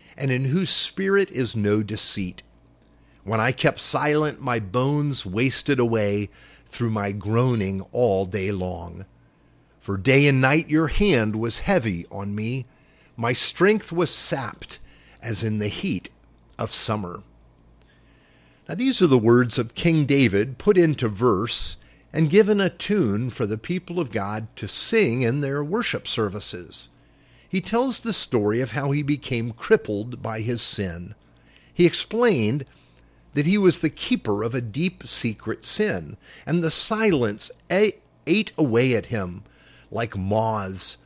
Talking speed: 145 wpm